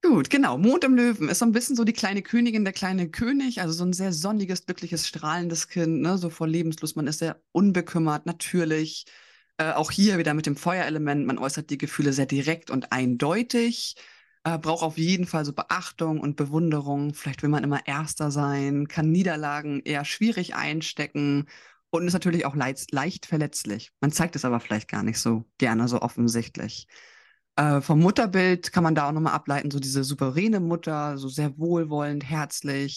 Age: 20-39